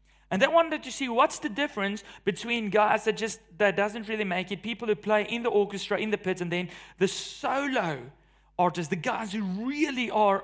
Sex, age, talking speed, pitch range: male, 30-49, 205 wpm, 180-240 Hz